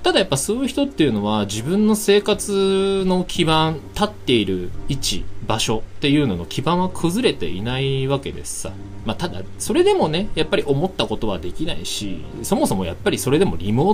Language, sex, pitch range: Japanese, male, 95-165 Hz